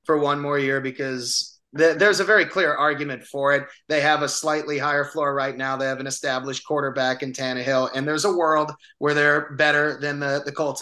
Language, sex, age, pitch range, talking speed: English, male, 30-49, 135-160 Hz, 210 wpm